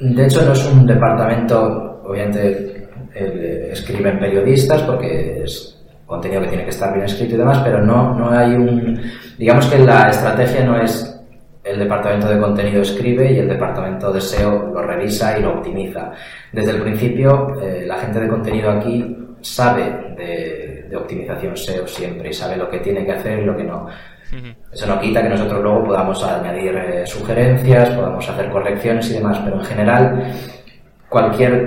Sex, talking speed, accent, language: male, 165 wpm, Spanish, Spanish